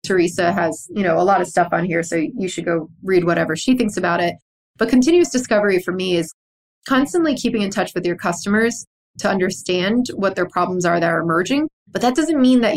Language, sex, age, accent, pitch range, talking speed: English, female, 20-39, American, 175-210 Hz, 220 wpm